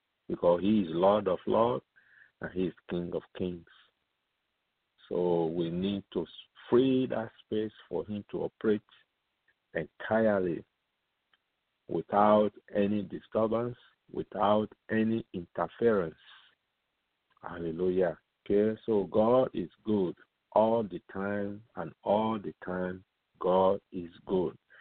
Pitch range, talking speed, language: 95-120 Hz, 110 wpm, English